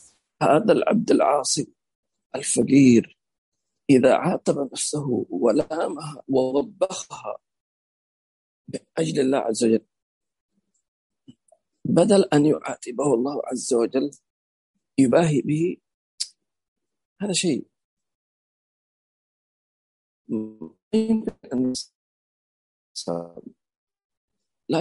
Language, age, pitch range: English, 40-59, 135-190 Hz